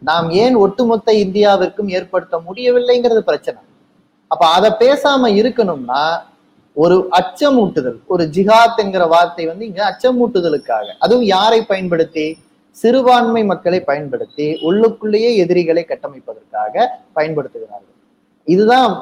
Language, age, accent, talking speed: Tamil, 30-49, native, 95 wpm